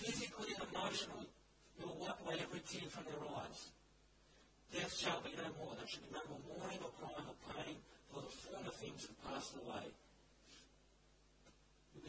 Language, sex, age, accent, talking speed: English, male, 60-79, American, 175 wpm